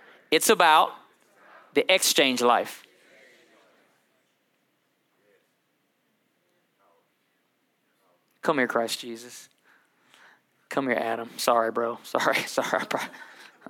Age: 20-39